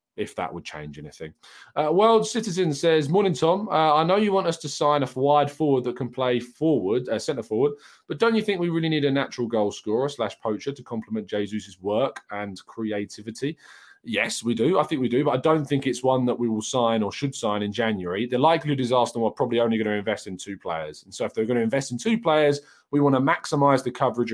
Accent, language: British, English